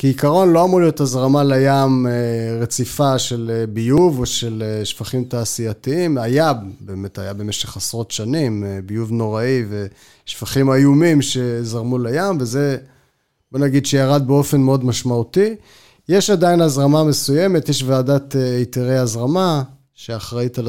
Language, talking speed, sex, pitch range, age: Hebrew, 120 wpm, male, 115-145 Hz, 30-49